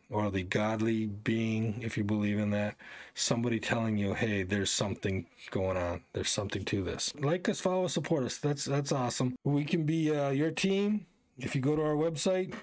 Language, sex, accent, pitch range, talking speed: English, male, American, 120-155 Hz, 200 wpm